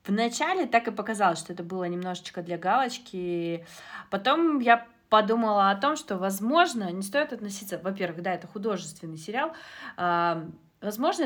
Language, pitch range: Russian, 175-225 Hz